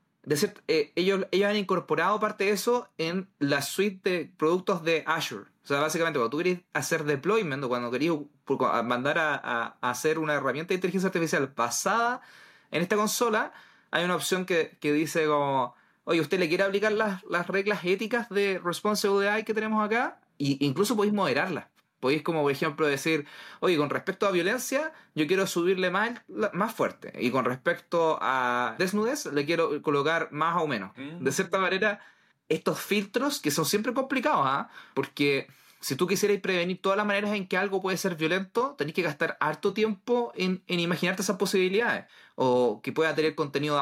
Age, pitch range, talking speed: 30-49, 150-205 Hz, 180 wpm